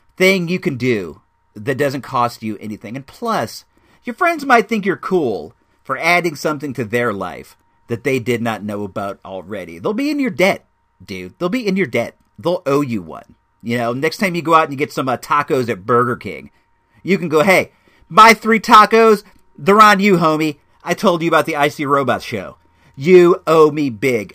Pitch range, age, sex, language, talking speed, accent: 115-160 Hz, 40-59, male, English, 205 wpm, American